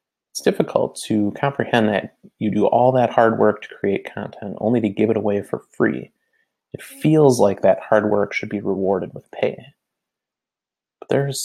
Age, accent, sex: 30-49, American, male